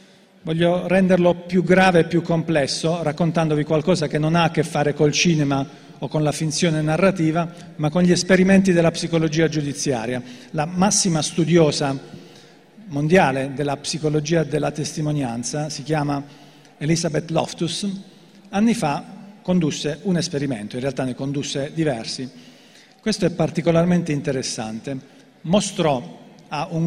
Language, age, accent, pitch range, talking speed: Italian, 40-59, native, 145-190 Hz, 130 wpm